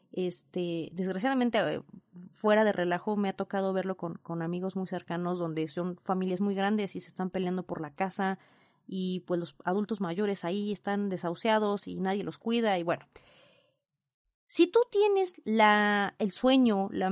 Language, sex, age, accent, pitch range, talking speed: Spanish, female, 30-49, Mexican, 190-250 Hz, 160 wpm